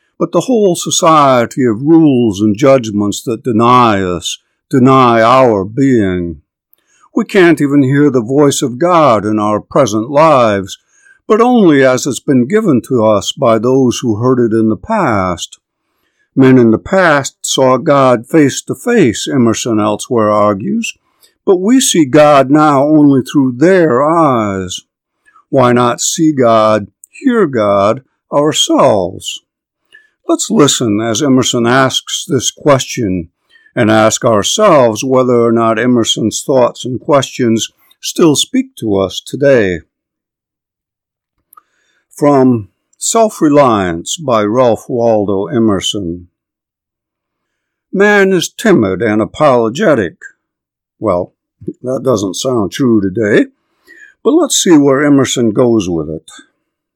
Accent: American